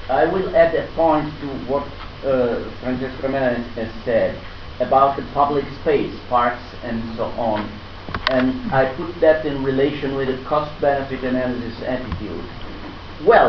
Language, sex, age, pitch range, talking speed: Italian, male, 50-69, 105-145 Hz, 140 wpm